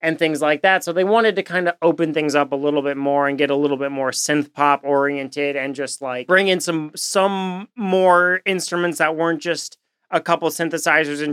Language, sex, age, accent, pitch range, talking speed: English, male, 30-49, American, 140-165 Hz, 230 wpm